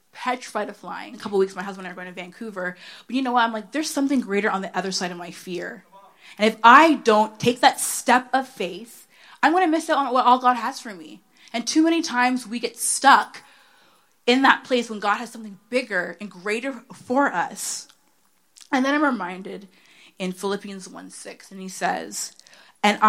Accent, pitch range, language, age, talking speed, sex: American, 185-245 Hz, English, 20-39, 220 wpm, female